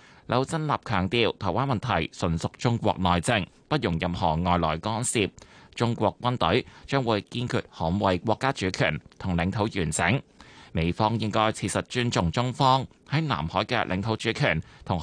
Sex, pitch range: male, 95-120 Hz